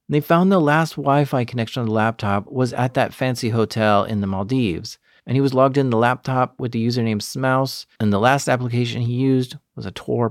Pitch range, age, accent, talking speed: 110-140 Hz, 40-59, American, 215 wpm